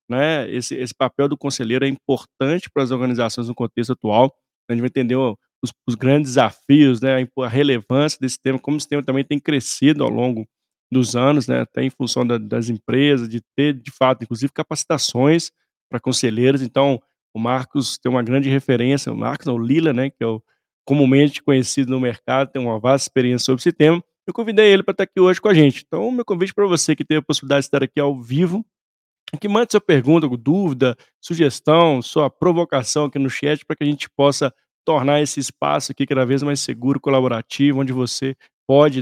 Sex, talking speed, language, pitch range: male, 200 wpm, Portuguese, 130-150 Hz